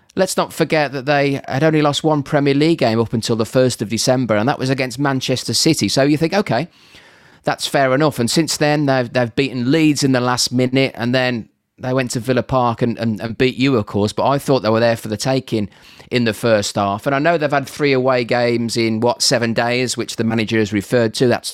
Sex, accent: male, British